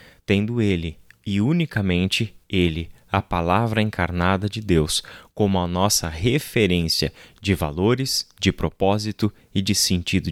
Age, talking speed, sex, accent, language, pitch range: 20-39, 120 wpm, male, Brazilian, Portuguese, 90-105 Hz